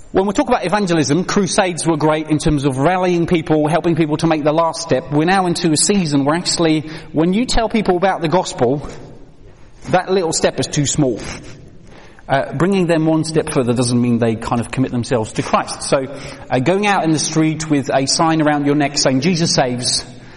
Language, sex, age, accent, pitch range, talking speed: English, male, 30-49, British, 125-160 Hz, 210 wpm